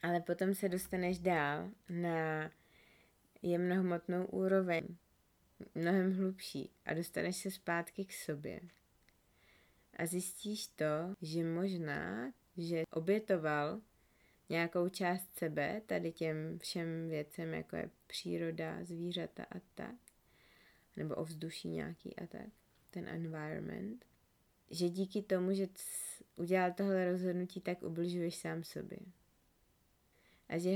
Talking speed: 110 wpm